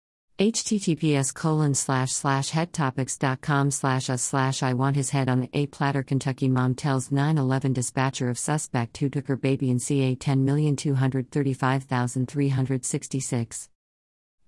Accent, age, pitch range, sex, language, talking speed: American, 50-69, 130-155 Hz, female, English, 125 wpm